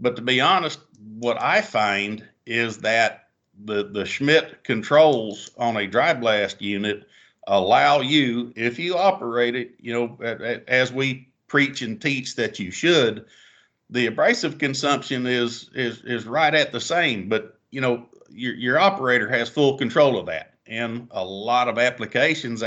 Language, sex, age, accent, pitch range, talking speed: English, male, 50-69, American, 120-140 Hz, 160 wpm